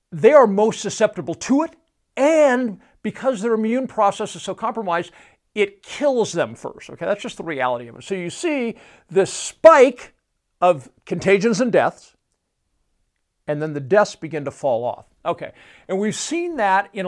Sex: male